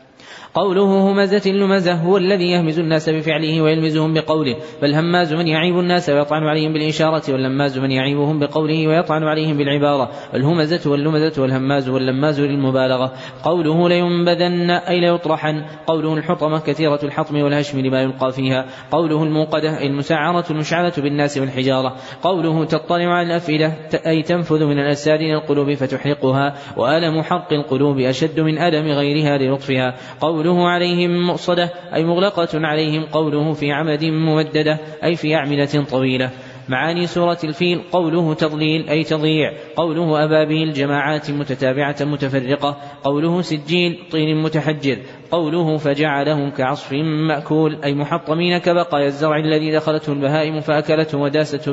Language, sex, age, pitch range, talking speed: Arabic, male, 20-39, 145-160 Hz, 125 wpm